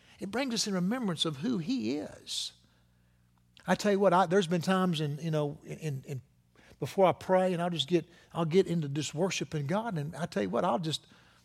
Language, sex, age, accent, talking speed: English, male, 60-79, American, 225 wpm